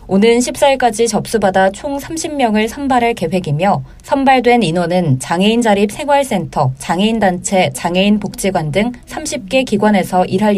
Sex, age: female, 20-39